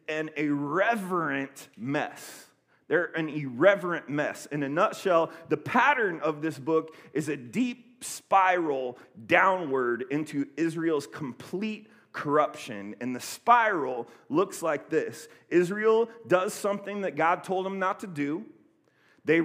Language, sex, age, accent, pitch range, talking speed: English, male, 30-49, American, 150-195 Hz, 125 wpm